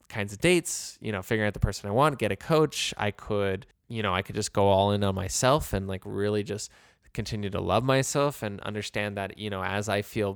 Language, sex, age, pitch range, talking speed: English, male, 20-39, 100-125 Hz, 245 wpm